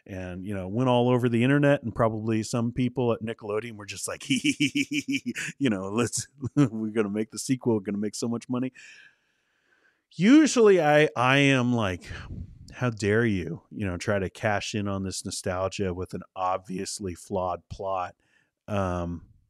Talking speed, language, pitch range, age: 170 wpm, English, 100-150 Hz, 40-59